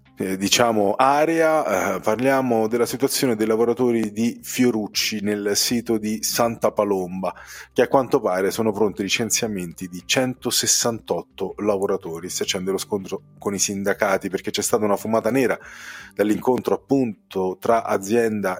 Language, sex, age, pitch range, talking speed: Italian, male, 30-49, 95-125 Hz, 135 wpm